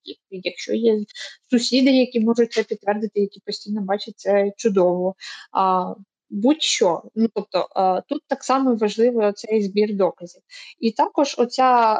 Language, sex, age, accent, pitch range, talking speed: Ukrainian, female, 20-39, native, 195-240 Hz, 125 wpm